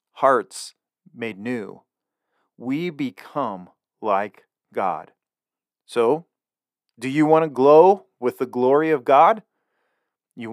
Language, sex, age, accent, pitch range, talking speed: English, male, 40-59, American, 120-155 Hz, 110 wpm